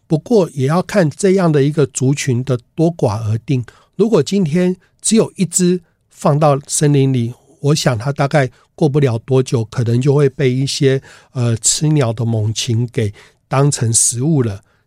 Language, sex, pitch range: Chinese, male, 125-165 Hz